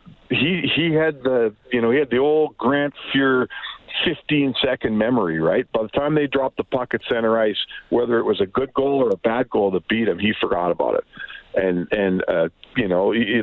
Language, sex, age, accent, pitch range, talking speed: English, male, 50-69, American, 115-150 Hz, 220 wpm